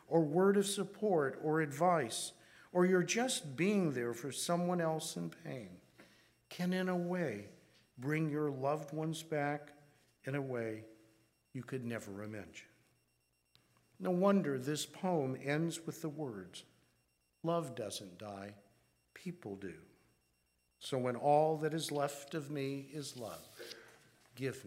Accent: American